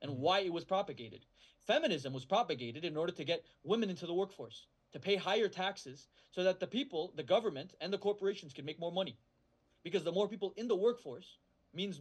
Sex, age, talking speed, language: male, 30-49, 205 wpm, English